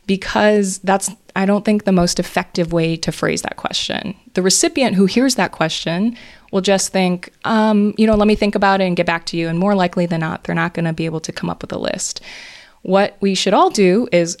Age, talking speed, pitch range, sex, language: 20-39, 240 wpm, 175-210 Hz, female, English